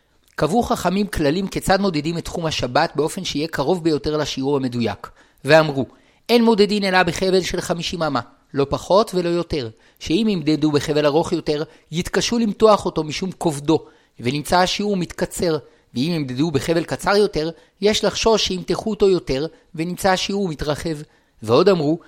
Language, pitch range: Hebrew, 155-195 Hz